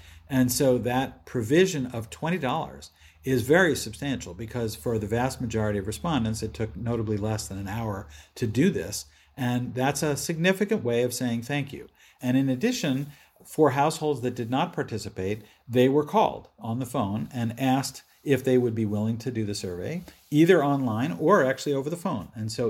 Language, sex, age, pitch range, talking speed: English, male, 50-69, 110-130 Hz, 185 wpm